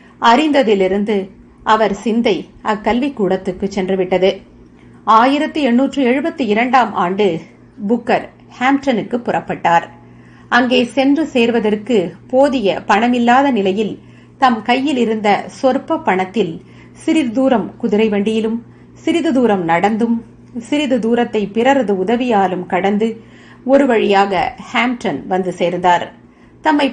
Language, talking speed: Tamil, 95 wpm